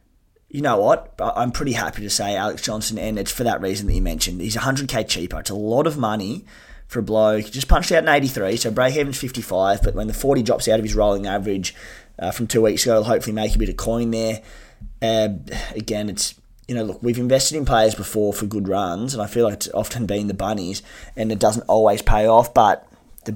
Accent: Australian